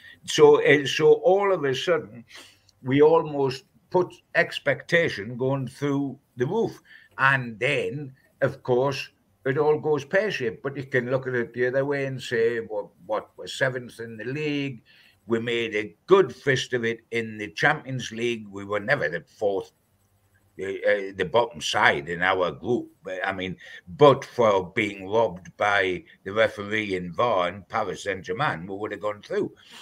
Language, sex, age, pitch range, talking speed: English, male, 60-79, 110-150 Hz, 170 wpm